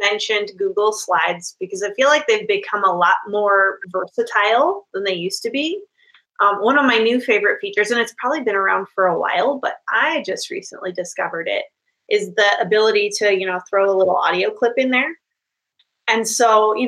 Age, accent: 20-39, American